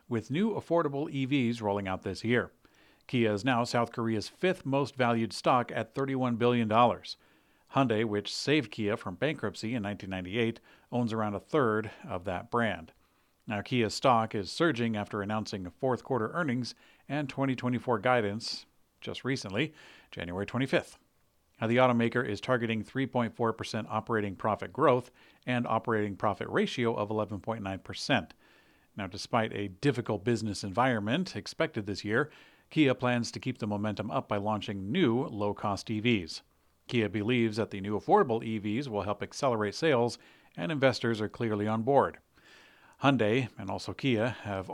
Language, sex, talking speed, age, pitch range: English, male, 150 wpm, 50-69, 105-125 Hz